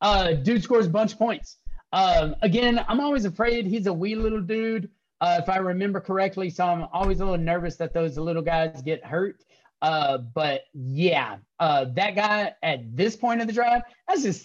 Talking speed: 200 wpm